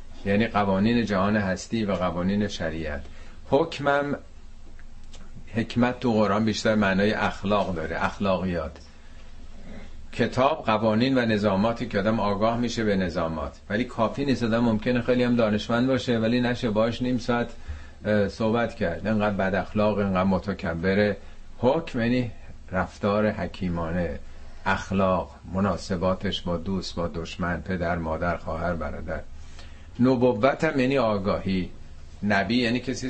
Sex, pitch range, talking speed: male, 85-120 Hz, 125 wpm